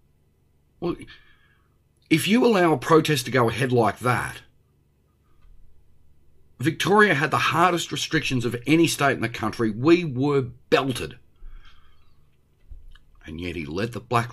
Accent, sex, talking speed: Australian, male, 130 wpm